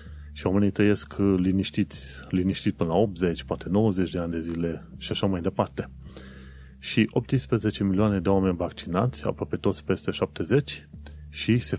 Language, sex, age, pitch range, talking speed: Romanian, male, 30-49, 85-110 Hz, 155 wpm